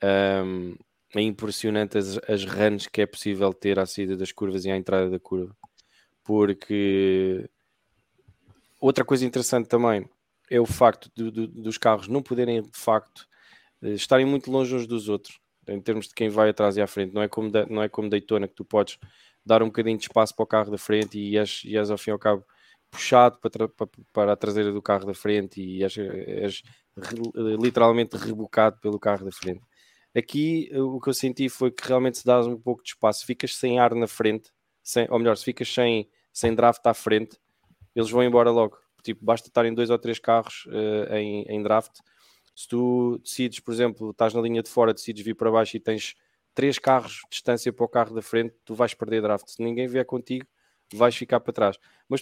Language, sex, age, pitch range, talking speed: English, male, 20-39, 105-120 Hz, 200 wpm